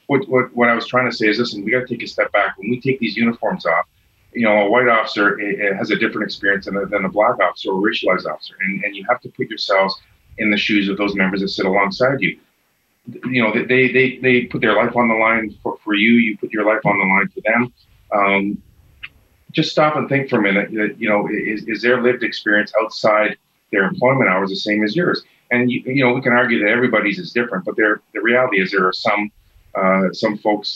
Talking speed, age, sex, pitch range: 250 wpm, 40-59, male, 100-120 Hz